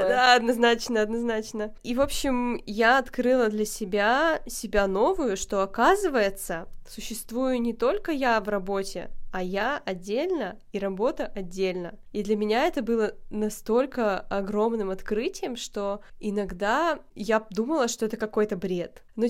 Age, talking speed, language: 20-39, 135 wpm, Russian